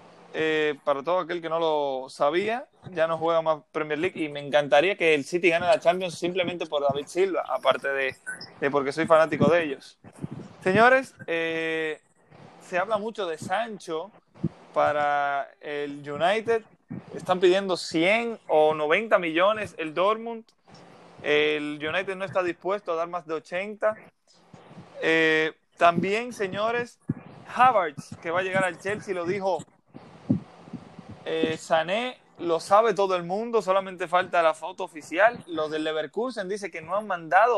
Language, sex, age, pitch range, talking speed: Spanish, male, 20-39, 155-205 Hz, 150 wpm